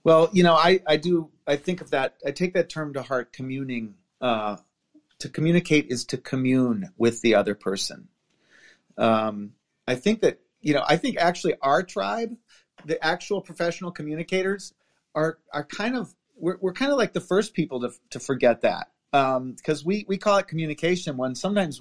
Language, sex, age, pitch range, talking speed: English, male, 40-59, 145-190 Hz, 185 wpm